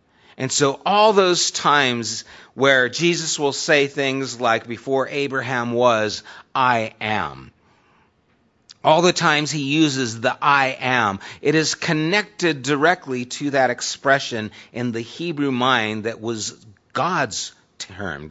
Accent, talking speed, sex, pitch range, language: American, 130 wpm, male, 110-140 Hz, English